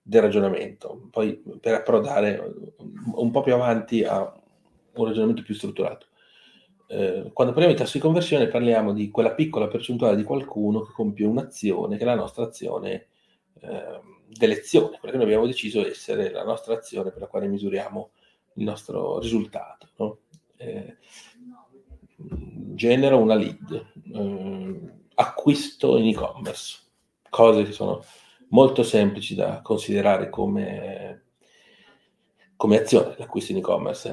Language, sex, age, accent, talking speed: Italian, male, 40-59, native, 135 wpm